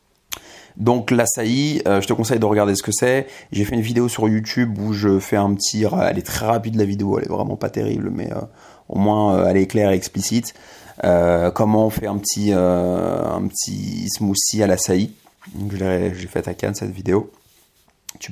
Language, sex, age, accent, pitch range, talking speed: French, male, 30-49, French, 95-110 Hz, 220 wpm